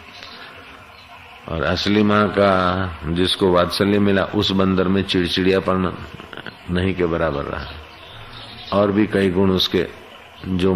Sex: male